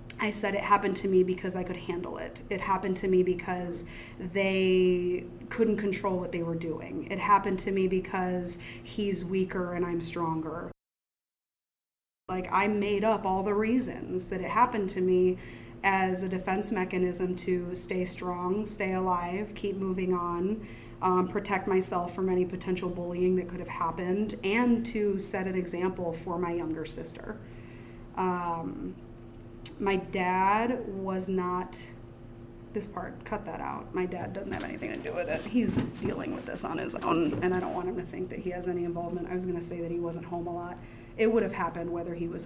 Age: 20-39